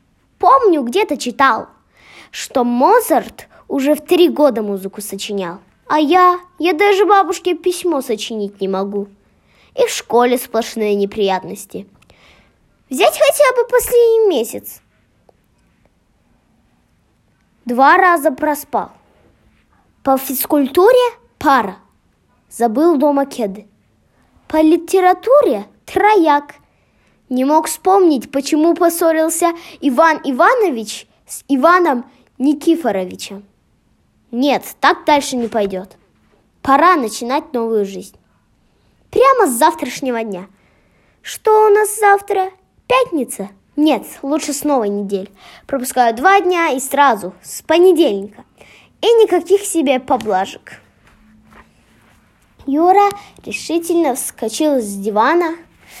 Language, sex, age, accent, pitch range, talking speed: Russian, female, 20-39, native, 235-360 Hz, 95 wpm